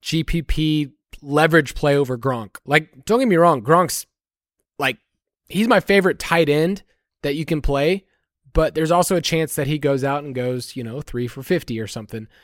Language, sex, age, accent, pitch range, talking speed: English, male, 20-39, American, 140-180 Hz, 190 wpm